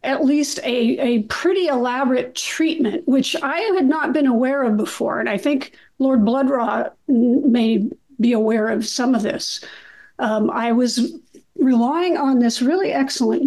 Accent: American